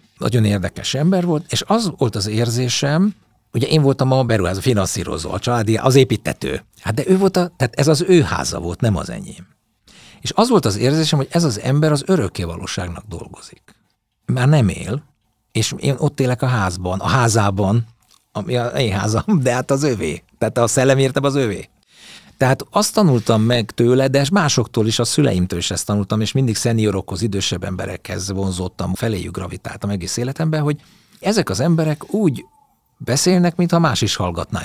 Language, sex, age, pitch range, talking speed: Hungarian, male, 60-79, 100-140 Hz, 175 wpm